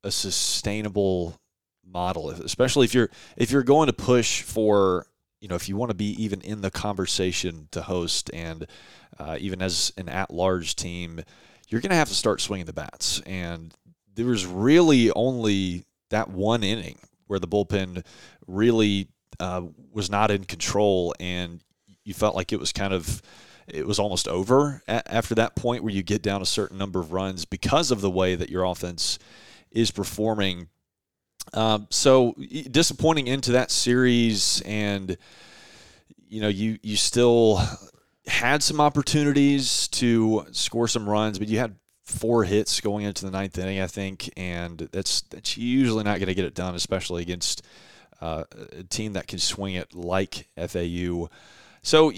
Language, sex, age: English, male, 30-49